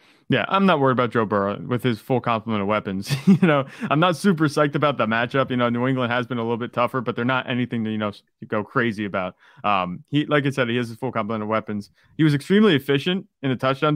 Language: English